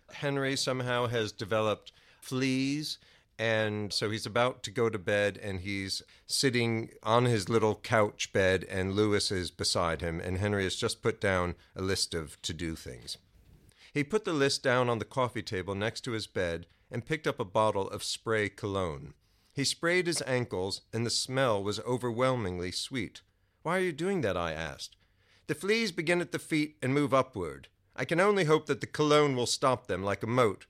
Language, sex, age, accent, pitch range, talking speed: English, male, 50-69, American, 105-150 Hz, 190 wpm